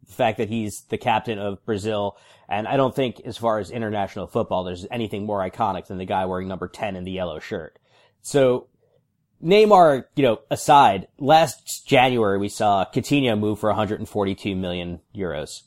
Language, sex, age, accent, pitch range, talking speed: English, male, 30-49, American, 105-135 Hz, 175 wpm